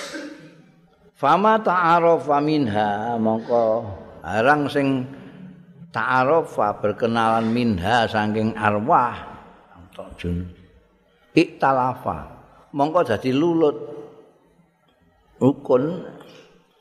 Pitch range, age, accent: 110-145 Hz, 50-69, native